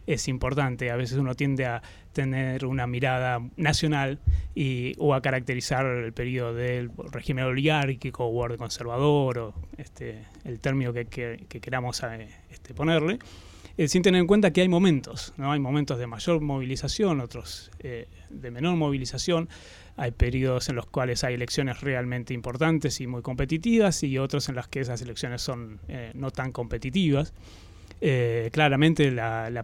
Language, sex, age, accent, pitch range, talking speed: Spanish, male, 20-39, Argentinian, 120-145 Hz, 160 wpm